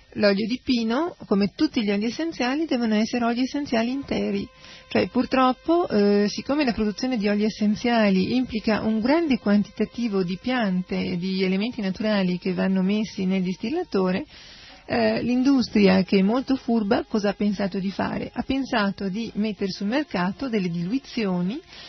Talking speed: 155 wpm